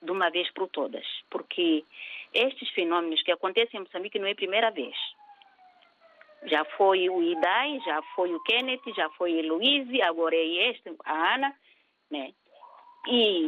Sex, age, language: female, 40-59, Portuguese